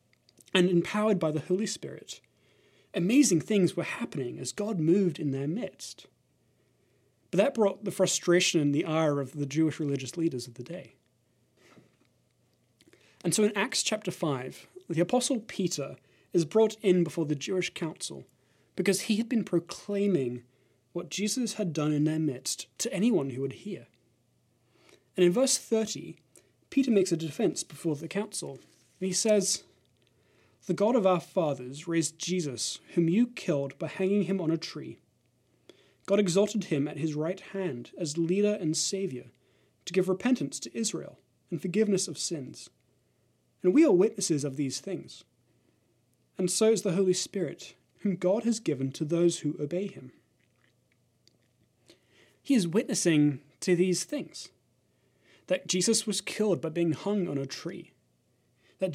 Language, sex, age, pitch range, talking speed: English, male, 20-39, 155-200 Hz, 155 wpm